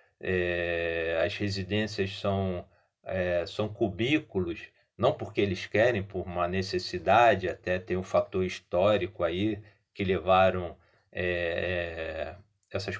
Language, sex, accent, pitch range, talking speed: Portuguese, male, Brazilian, 90-105 Hz, 110 wpm